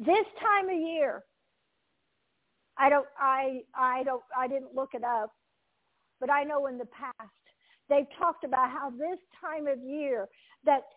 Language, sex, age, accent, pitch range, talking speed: English, female, 50-69, American, 260-360 Hz, 160 wpm